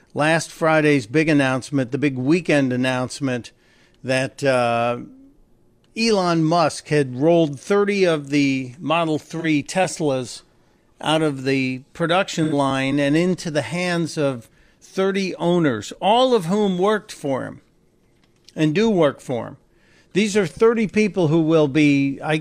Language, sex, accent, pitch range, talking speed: English, male, American, 145-180 Hz, 135 wpm